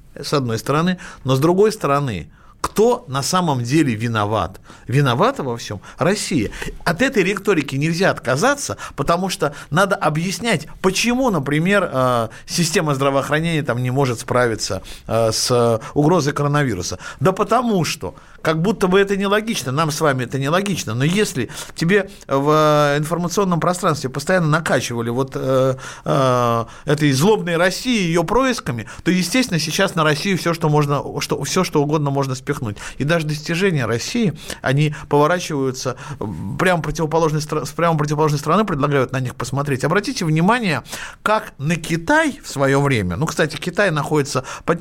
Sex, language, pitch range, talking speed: male, Russian, 135-180 Hz, 145 wpm